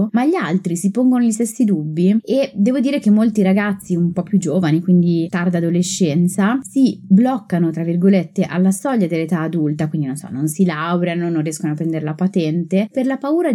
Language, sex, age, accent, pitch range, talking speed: Italian, female, 20-39, native, 175-225 Hz, 195 wpm